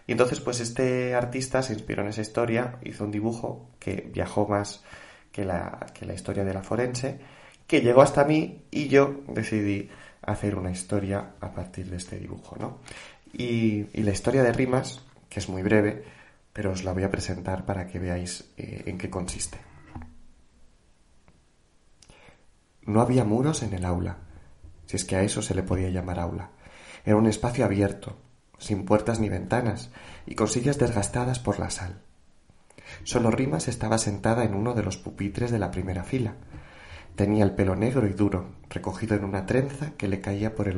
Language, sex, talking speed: Spanish, male, 180 wpm